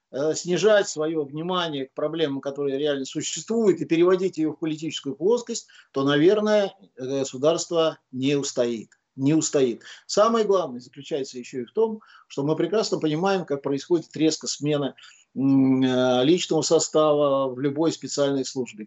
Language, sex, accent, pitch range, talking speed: Russian, male, native, 140-190 Hz, 130 wpm